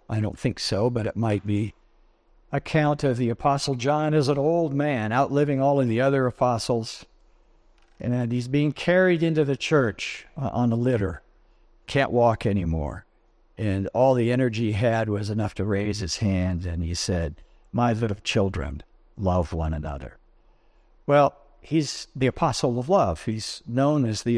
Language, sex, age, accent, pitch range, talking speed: English, male, 60-79, American, 110-140 Hz, 165 wpm